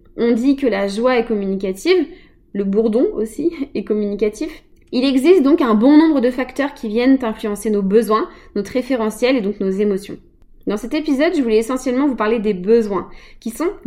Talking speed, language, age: 185 wpm, French, 20-39